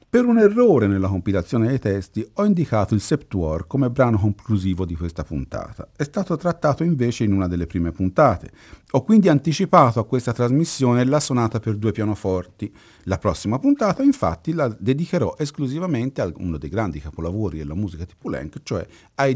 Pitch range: 95-140 Hz